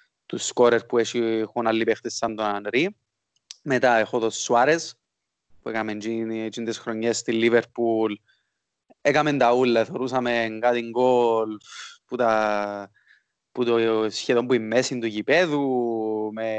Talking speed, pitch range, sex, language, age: 135 wpm, 110-140 Hz, male, Greek, 20-39